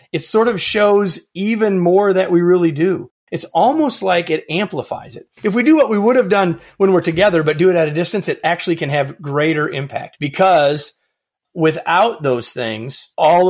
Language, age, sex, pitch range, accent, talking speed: English, 30-49, male, 130-175 Hz, American, 195 wpm